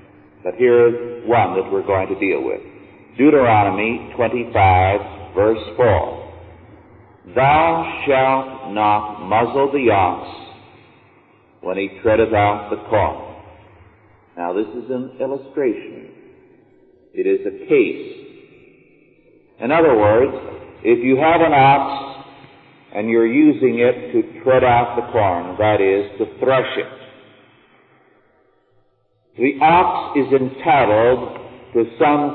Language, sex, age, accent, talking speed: English, male, 50-69, American, 115 wpm